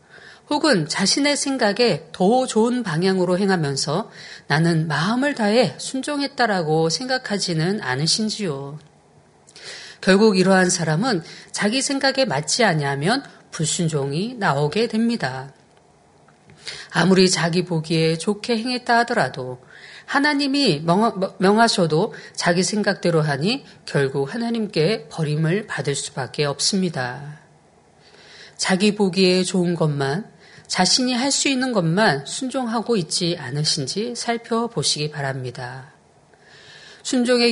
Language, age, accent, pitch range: Korean, 40-59, native, 155-230 Hz